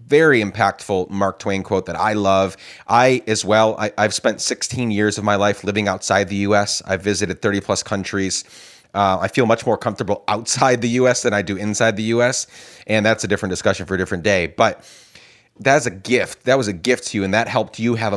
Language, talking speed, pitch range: English, 220 wpm, 100-120 Hz